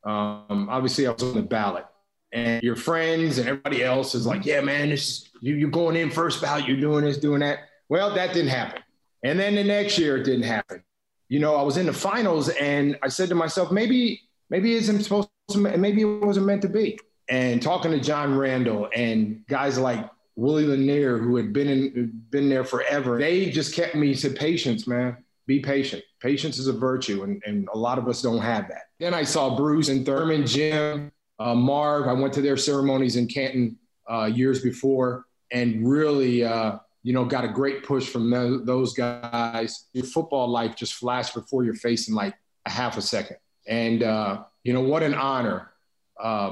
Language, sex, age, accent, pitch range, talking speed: English, male, 30-49, American, 120-150 Hz, 205 wpm